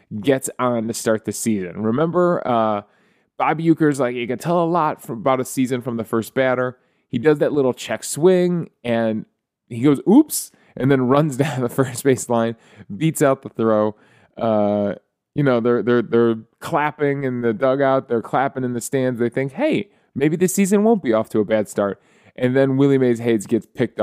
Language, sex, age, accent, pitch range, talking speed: English, male, 20-39, American, 105-135 Hz, 200 wpm